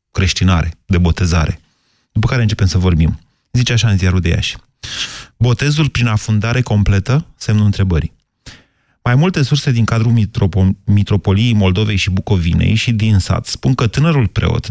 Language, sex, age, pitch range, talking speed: Romanian, male, 30-49, 95-120 Hz, 145 wpm